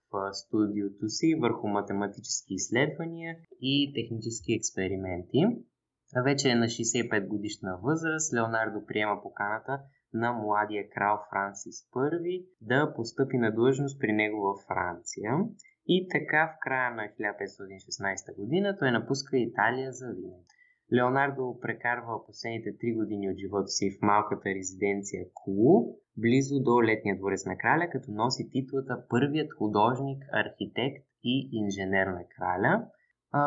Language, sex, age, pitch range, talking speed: Bulgarian, male, 20-39, 105-140 Hz, 125 wpm